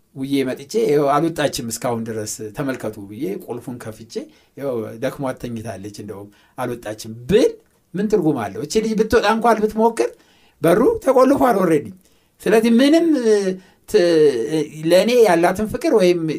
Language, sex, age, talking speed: Amharic, male, 60-79, 110 wpm